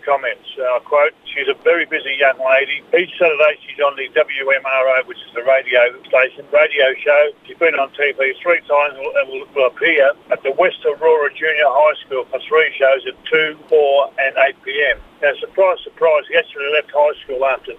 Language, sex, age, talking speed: English, male, 50-69, 190 wpm